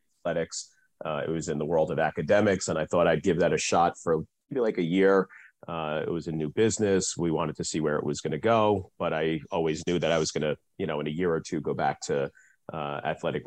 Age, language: 40-59, English